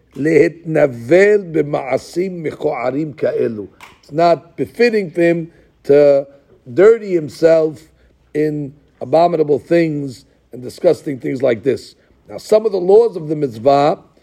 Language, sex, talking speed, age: English, male, 100 wpm, 50-69